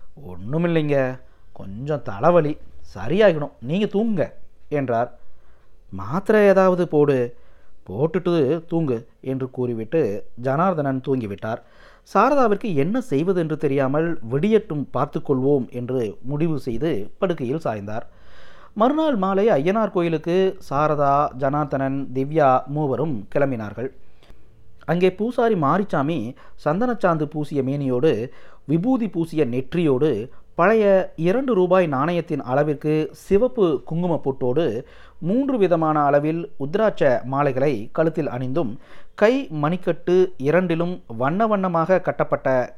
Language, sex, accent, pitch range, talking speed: Tamil, male, native, 135-185 Hz, 95 wpm